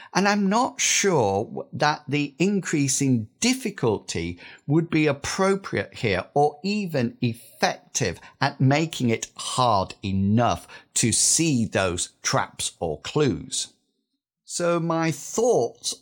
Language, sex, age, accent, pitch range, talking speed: English, male, 50-69, British, 110-155 Hz, 110 wpm